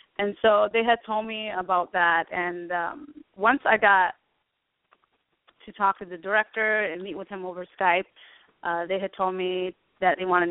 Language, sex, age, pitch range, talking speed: English, female, 20-39, 180-215 Hz, 185 wpm